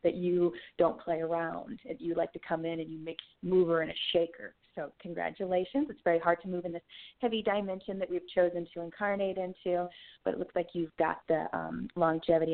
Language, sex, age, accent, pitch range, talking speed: English, female, 30-49, American, 170-205 Hz, 210 wpm